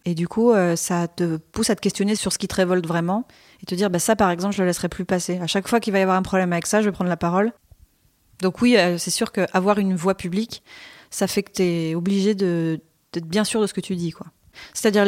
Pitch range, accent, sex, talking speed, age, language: 175-200 Hz, French, female, 275 wpm, 20-39, French